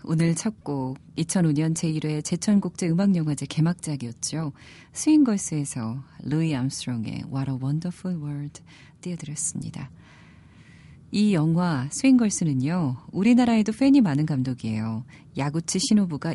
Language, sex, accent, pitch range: Korean, female, native, 140-190 Hz